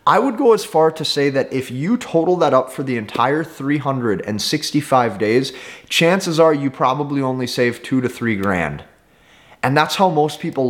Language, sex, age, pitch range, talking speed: English, male, 30-49, 125-180 Hz, 185 wpm